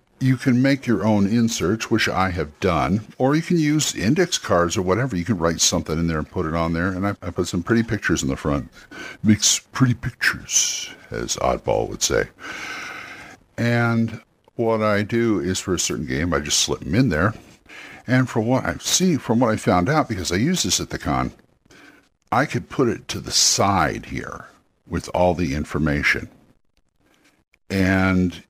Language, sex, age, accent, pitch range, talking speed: English, male, 60-79, American, 90-115 Hz, 190 wpm